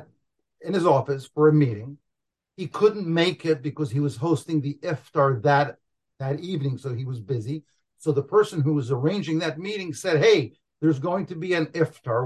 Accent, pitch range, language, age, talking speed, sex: American, 140-170 Hz, English, 50-69, 190 wpm, male